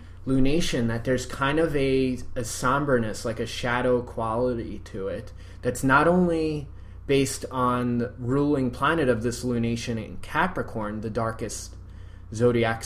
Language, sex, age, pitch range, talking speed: English, male, 20-39, 100-130 Hz, 140 wpm